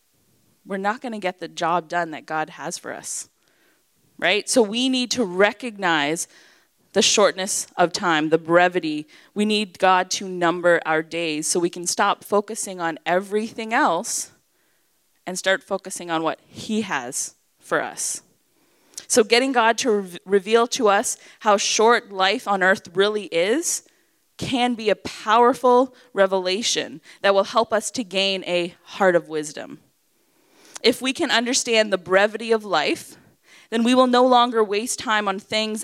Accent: American